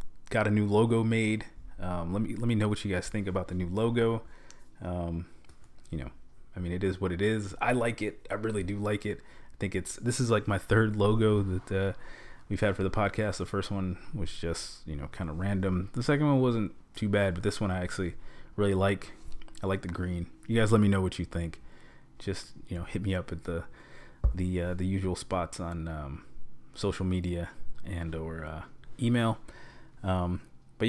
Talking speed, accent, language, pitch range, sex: 215 wpm, American, English, 90-105 Hz, male